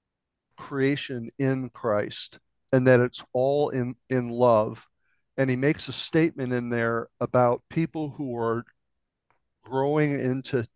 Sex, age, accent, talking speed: male, 60-79, American, 130 wpm